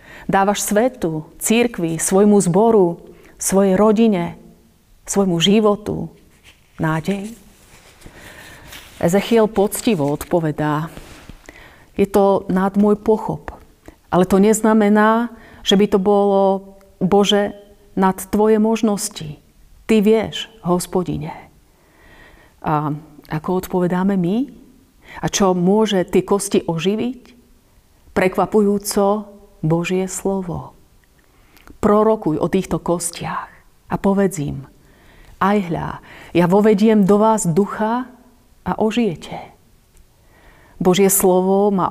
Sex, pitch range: female, 175-210 Hz